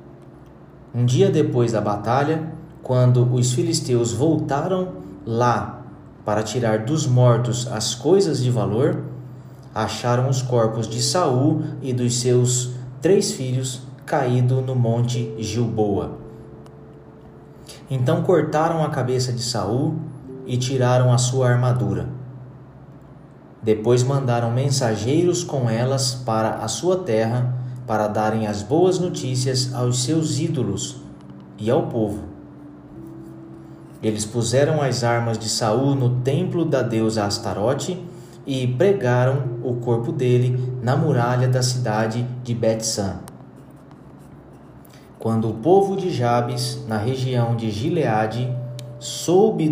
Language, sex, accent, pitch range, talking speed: Portuguese, male, Brazilian, 115-140 Hz, 115 wpm